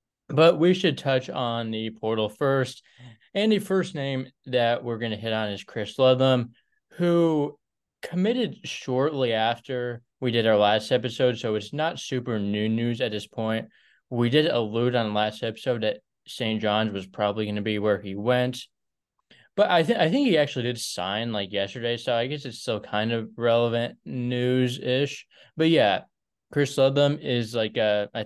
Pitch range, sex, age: 110-135 Hz, male, 20-39